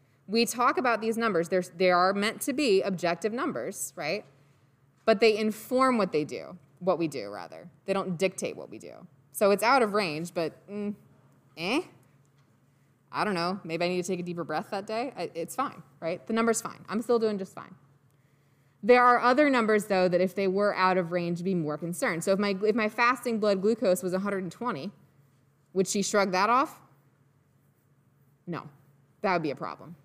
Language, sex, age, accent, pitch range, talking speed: English, female, 20-39, American, 155-210 Hz, 190 wpm